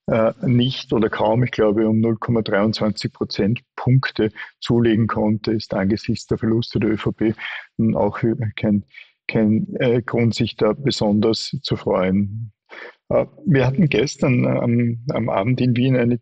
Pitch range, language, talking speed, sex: 110-130 Hz, German, 130 wpm, male